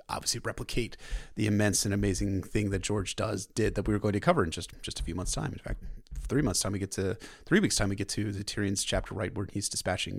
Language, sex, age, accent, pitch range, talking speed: English, male, 30-49, American, 100-120 Hz, 265 wpm